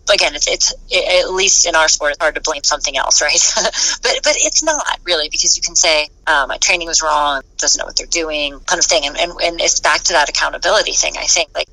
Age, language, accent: 30-49, English, American